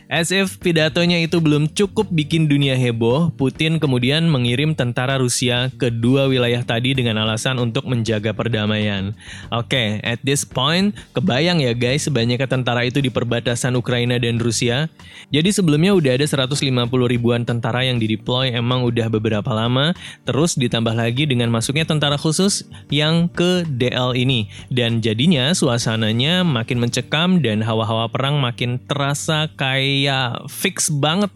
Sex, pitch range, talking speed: male, 115-150 Hz, 145 wpm